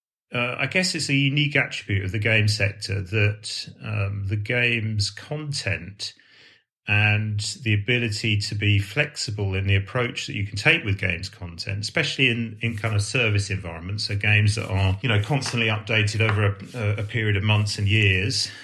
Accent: British